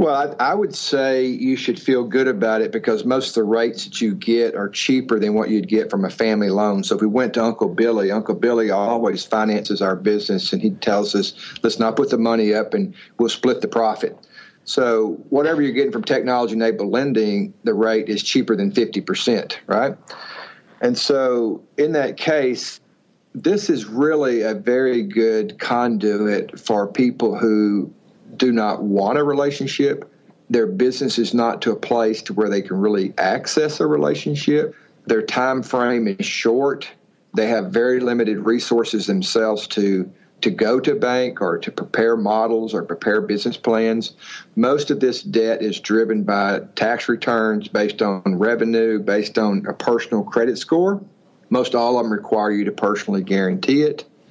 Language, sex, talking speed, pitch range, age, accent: English, male, 175 wpm, 105-130 Hz, 40-59, American